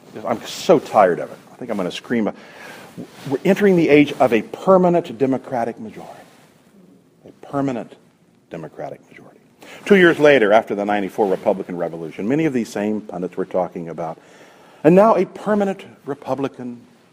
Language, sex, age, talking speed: English, male, 50-69, 160 wpm